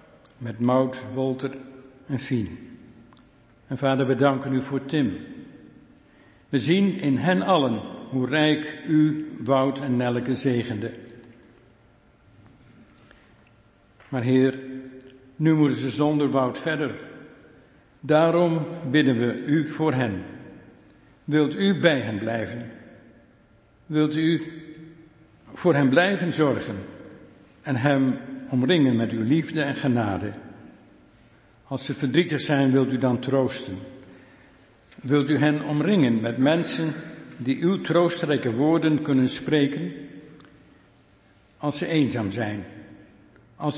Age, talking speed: 60-79, 110 wpm